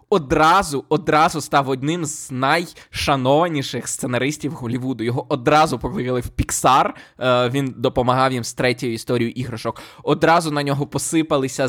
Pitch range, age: 130-160 Hz, 20-39